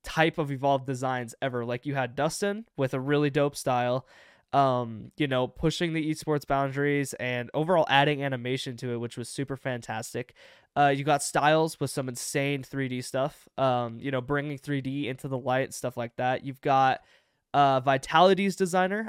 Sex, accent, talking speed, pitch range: male, American, 175 wpm, 130-155 Hz